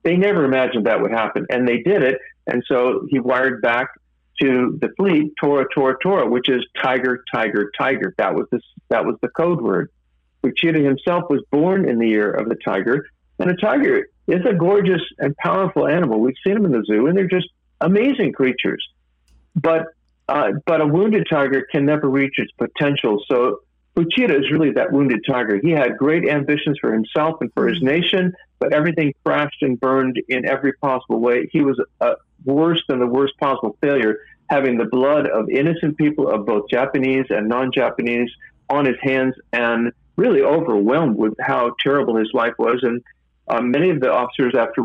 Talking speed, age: 185 wpm, 50-69